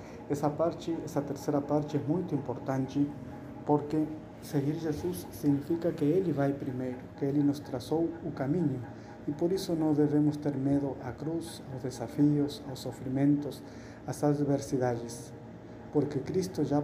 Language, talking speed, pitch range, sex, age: Portuguese, 145 wpm, 125-150 Hz, male, 50-69